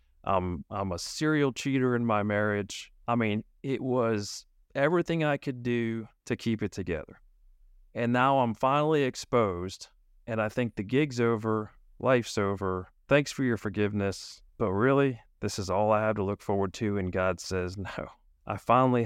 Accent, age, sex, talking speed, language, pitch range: American, 40-59, male, 170 wpm, English, 100-125 Hz